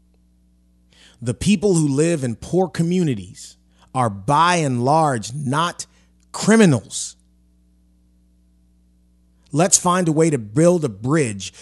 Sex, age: male, 30-49